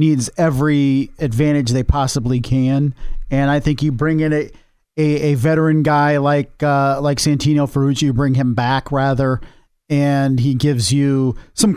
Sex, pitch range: male, 135-155 Hz